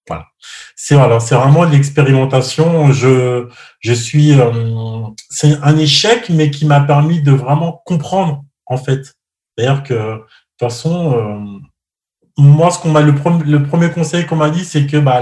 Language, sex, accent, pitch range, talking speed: French, male, French, 115-145 Hz, 175 wpm